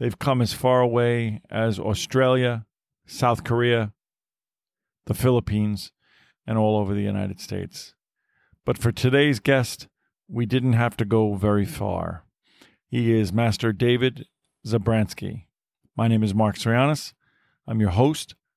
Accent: American